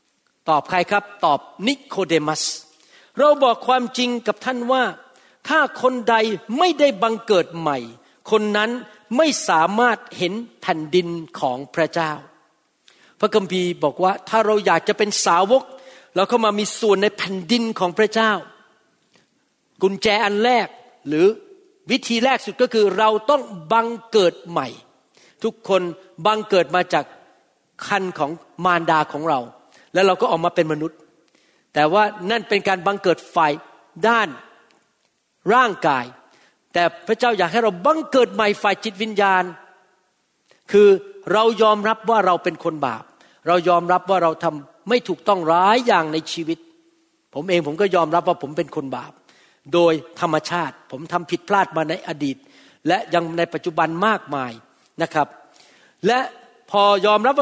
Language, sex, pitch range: Thai, male, 170-225 Hz